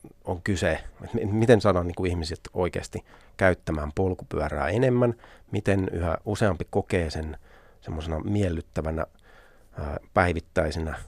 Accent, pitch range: native, 85-100 Hz